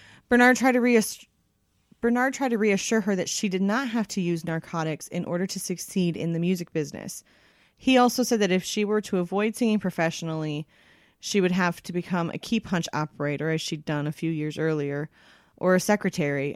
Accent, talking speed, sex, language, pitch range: American, 200 wpm, female, English, 160-200 Hz